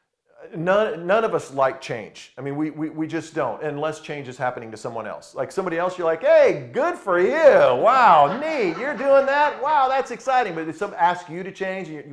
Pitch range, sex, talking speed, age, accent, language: 125-190 Hz, male, 225 wpm, 40-59, American, English